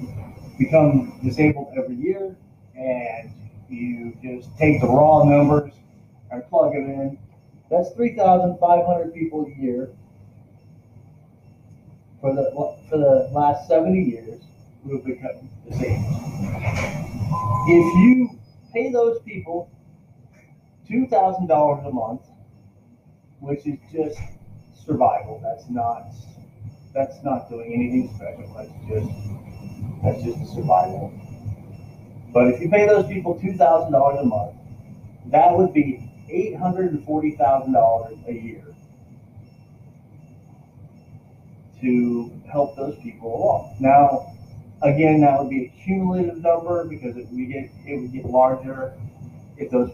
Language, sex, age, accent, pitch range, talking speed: English, male, 30-49, American, 120-150 Hz, 125 wpm